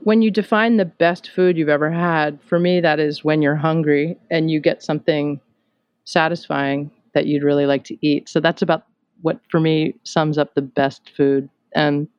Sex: female